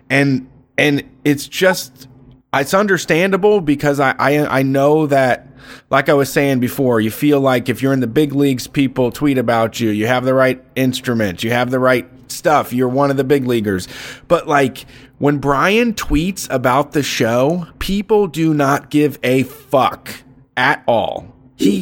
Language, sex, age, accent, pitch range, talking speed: English, male, 30-49, American, 130-155 Hz, 175 wpm